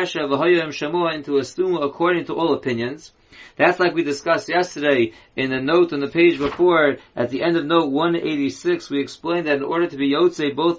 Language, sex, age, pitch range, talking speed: English, male, 30-49, 145-180 Hz, 200 wpm